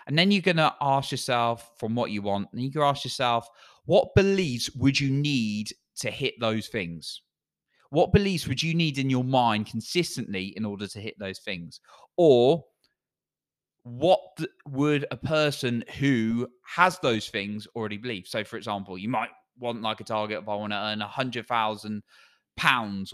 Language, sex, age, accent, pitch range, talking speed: English, male, 20-39, British, 105-135 Hz, 180 wpm